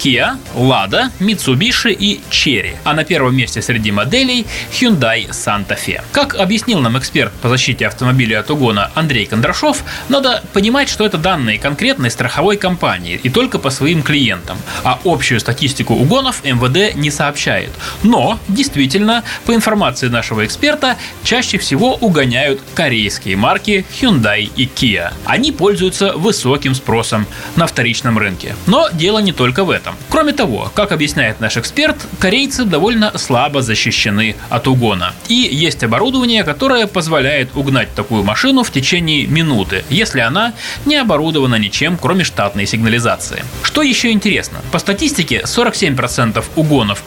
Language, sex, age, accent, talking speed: Russian, male, 20-39, native, 140 wpm